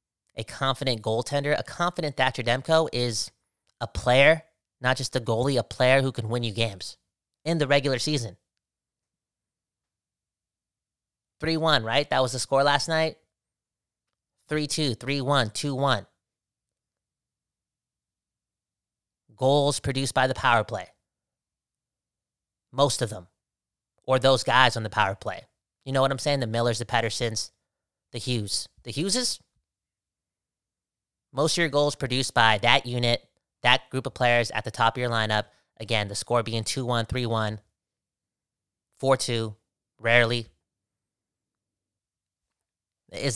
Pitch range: 110-135 Hz